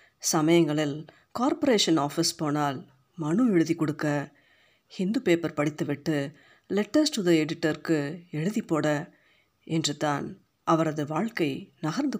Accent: native